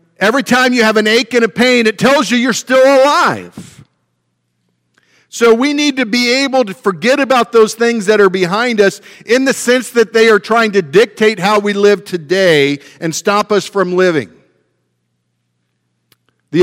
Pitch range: 170-225 Hz